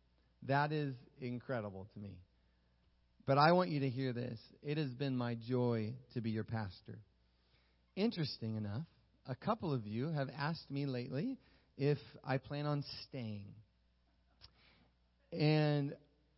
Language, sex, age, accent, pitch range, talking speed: English, male, 30-49, American, 120-150 Hz, 135 wpm